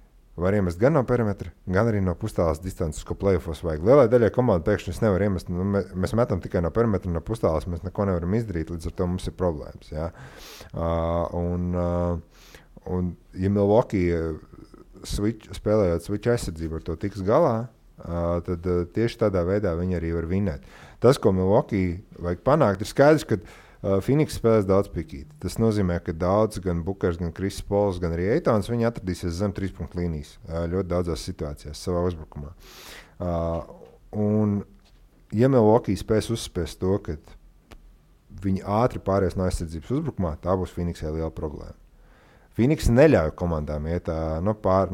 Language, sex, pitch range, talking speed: English, male, 85-100 Hz, 155 wpm